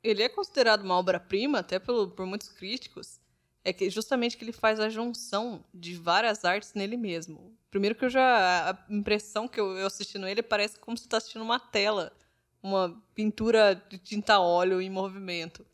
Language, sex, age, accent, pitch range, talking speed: Portuguese, female, 20-39, Brazilian, 185-225 Hz, 190 wpm